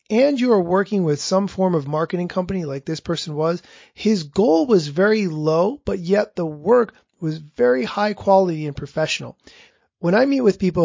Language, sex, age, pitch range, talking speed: English, male, 30-49, 155-210 Hz, 190 wpm